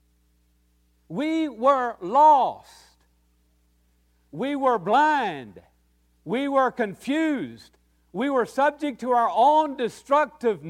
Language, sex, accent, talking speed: English, male, American, 90 wpm